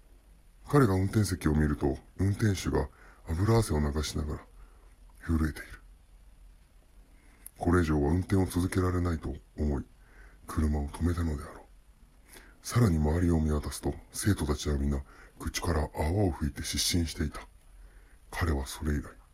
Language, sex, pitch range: Japanese, female, 75-90 Hz